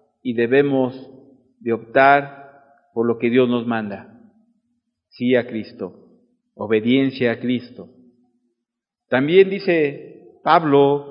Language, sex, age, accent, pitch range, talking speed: English, male, 50-69, Mexican, 125-175 Hz, 105 wpm